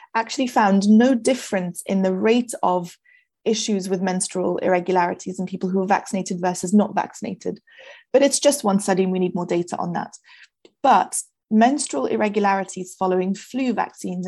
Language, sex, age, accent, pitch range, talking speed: English, female, 20-39, British, 185-225 Hz, 160 wpm